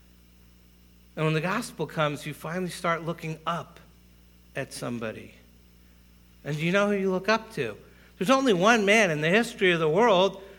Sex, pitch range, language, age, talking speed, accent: male, 160-205 Hz, English, 60-79, 170 wpm, American